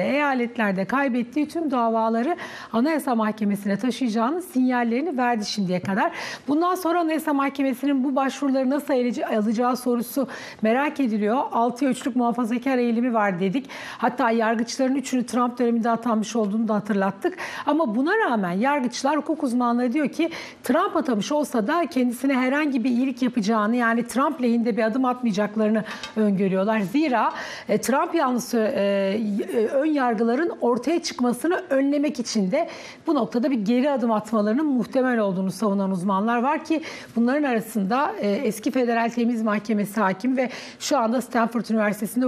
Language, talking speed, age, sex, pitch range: Turkish, 140 wpm, 60-79, female, 225-275 Hz